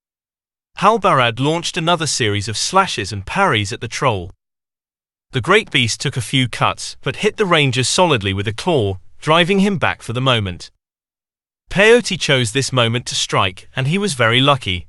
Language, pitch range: English, 110-155 Hz